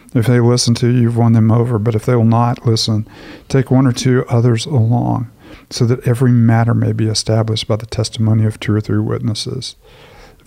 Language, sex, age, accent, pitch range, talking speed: English, male, 50-69, American, 110-125 Hz, 210 wpm